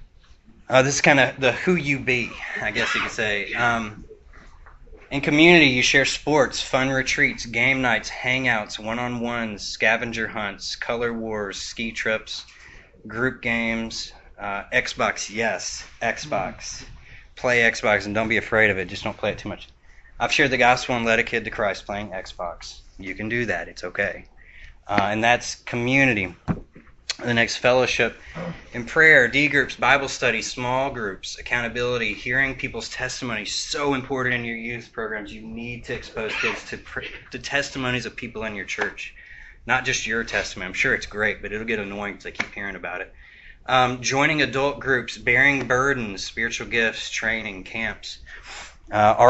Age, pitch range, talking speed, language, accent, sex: 20-39, 105-125 Hz, 165 wpm, English, American, male